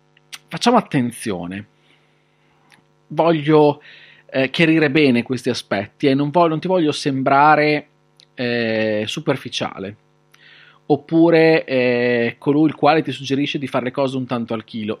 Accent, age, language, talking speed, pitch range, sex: native, 30-49, Italian, 130 wpm, 120-165 Hz, male